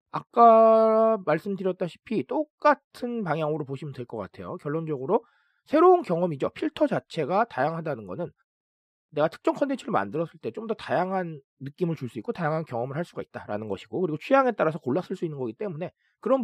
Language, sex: Korean, male